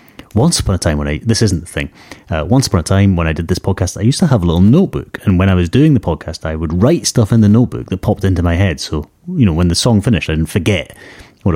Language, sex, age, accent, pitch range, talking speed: English, male, 30-49, British, 85-110 Hz, 295 wpm